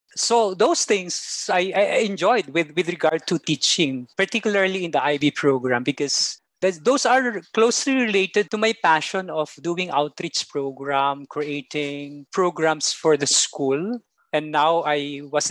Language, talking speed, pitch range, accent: English, 145 wpm, 155-210 Hz, Filipino